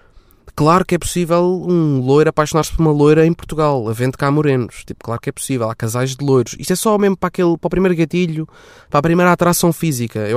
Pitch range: 125-160 Hz